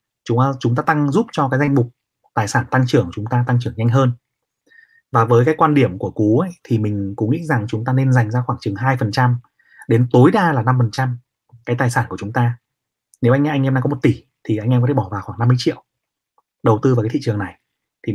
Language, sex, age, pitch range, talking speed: Vietnamese, male, 20-39, 115-140 Hz, 255 wpm